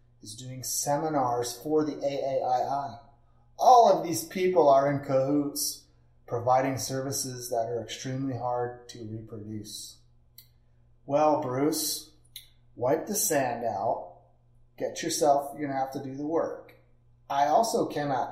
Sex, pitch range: male, 120-175 Hz